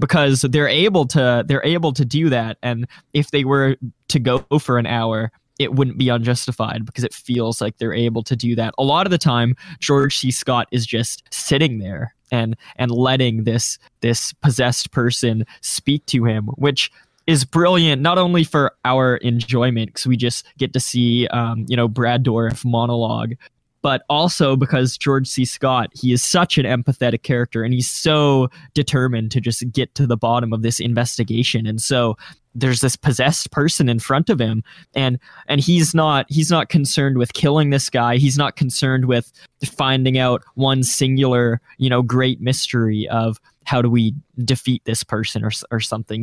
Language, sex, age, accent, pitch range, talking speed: English, male, 20-39, American, 115-140 Hz, 185 wpm